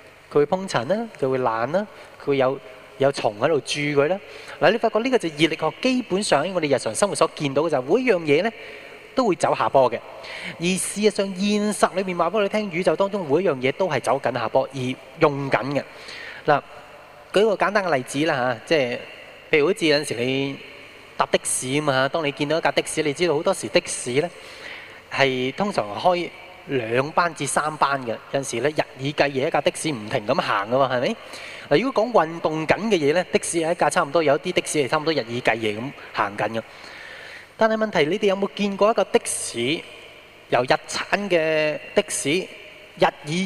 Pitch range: 140-205 Hz